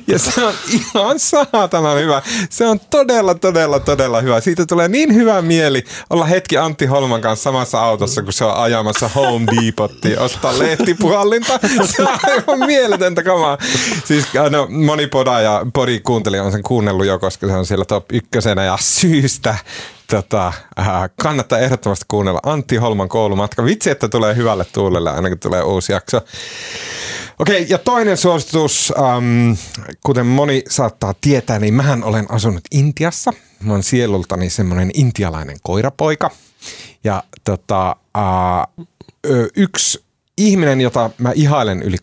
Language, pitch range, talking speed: Finnish, 105-170 Hz, 145 wpm